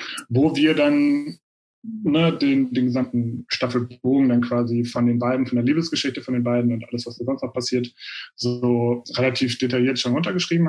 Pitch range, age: 125-160 Hz, 30-49